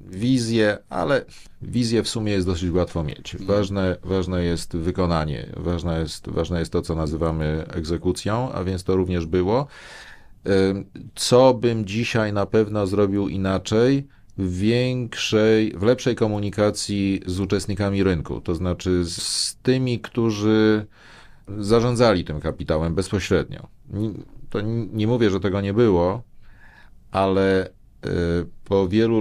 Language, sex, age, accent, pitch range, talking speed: Polish, male, 40-59, native, 90-110 Hz, 125 wpm